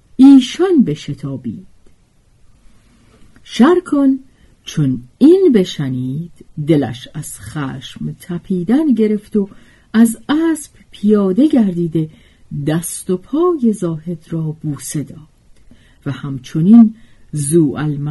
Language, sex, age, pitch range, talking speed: Persian, female, 50-69, 145-230 Hz, 95 wpm